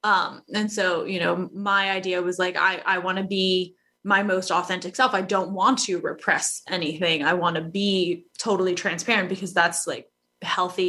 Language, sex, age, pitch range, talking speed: English, female, 20-39, 175-205 Hz, 185 wpm